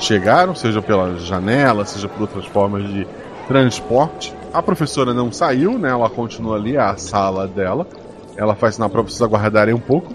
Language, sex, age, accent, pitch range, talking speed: Portuguese, male, 20-39, Brazilian, 110-140 Hz, 175 wpm